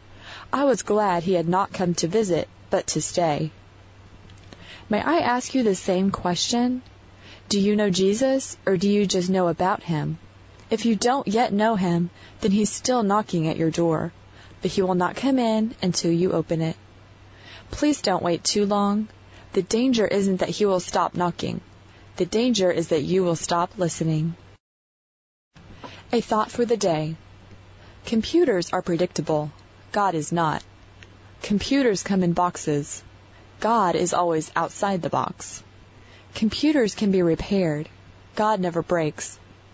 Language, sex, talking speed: English, female, 155 wpm